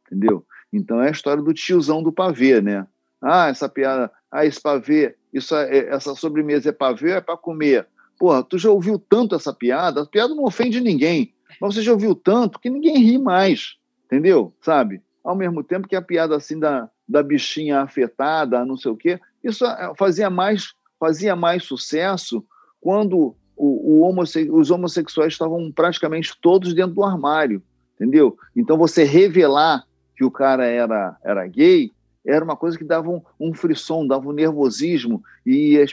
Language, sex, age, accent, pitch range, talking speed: Portuguese, male, 50-69, Brazilian, 135-200 Hz, 175 wpm